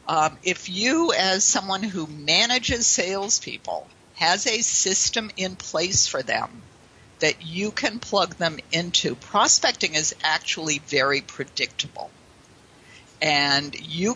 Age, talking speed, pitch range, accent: 50-69, 120 wpm, 155-225 Hz, American